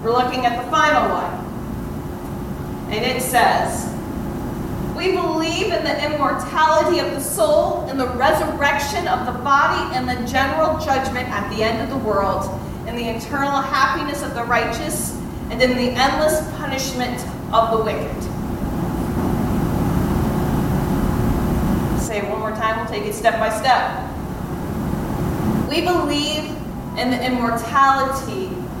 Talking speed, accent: 135 wpm, American